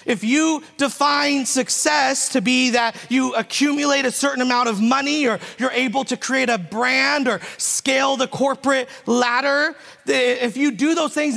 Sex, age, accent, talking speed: male, 40-59, American, 165 wpm